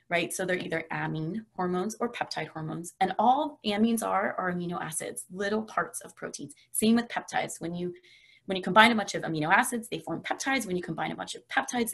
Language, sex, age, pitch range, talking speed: English, female, 20-39, 175-230 Hz, 215 wpm